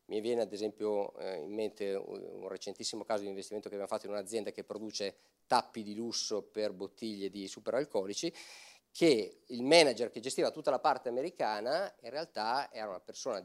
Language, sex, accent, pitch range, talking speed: Italian, male, native, 105-130 Hz, 175 wpm